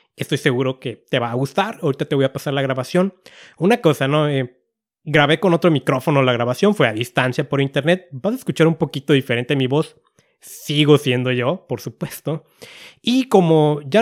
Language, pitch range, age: Spanish, 135-180 Hz, 30-49